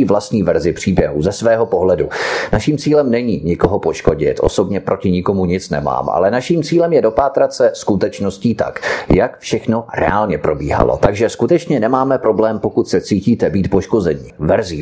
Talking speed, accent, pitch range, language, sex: 155 wpm, native, 95-135 Hz, Czech, male